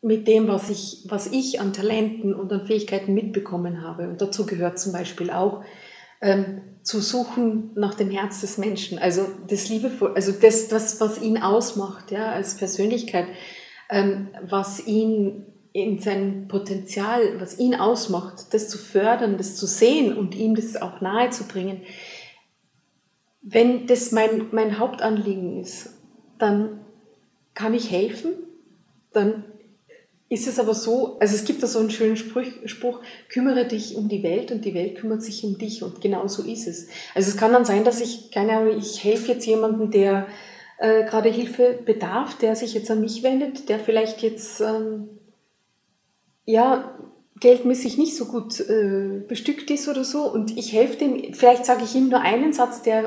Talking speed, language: 170 wpm, German